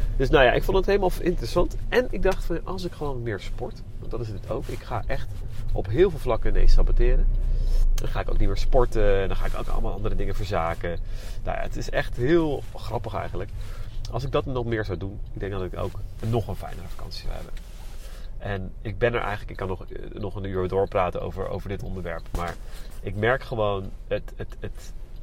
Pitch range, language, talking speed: 95-120 Hz, Dutch, 220 wpm